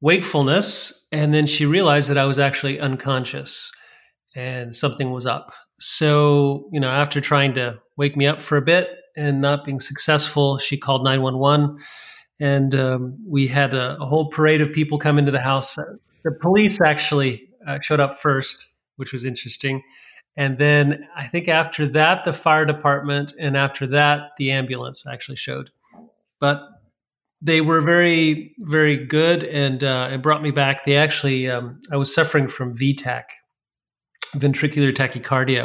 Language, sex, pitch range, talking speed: English, male, 135-150 Hz, 160 wpm